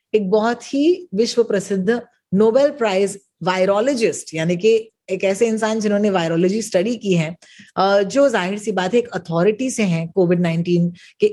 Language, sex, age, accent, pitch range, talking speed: Hindi, female, 30-49, native, 185-245 Hz, 160 wpm